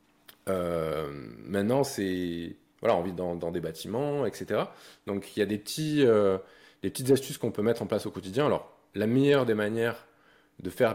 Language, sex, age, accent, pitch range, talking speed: French, male, 20-39, French, 95-135 Hz, 190 wpm